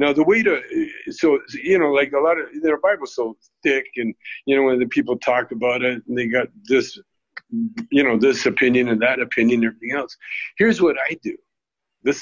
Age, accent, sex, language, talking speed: 60-79, American, male, English, 210 wpm